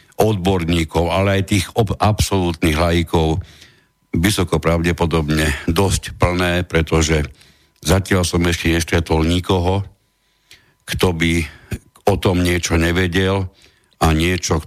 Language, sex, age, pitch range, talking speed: Slovak, male, 60-79, 75-95 Hz, 100 wpm